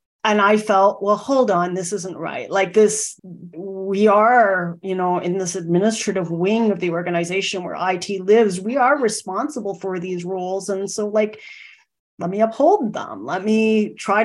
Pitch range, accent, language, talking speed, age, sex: 180-215 Hz, American, English, 175 wpm, 40-59, female